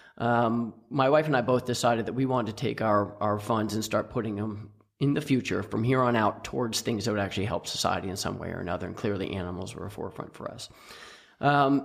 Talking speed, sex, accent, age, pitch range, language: 240 wpm, male, American, 40-59, 100-125 Hz, English